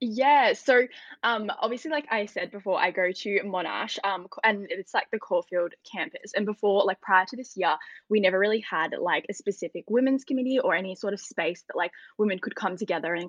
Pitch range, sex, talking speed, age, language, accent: 185-215 Hz, female, 210 wpm, 10-29, English, Australian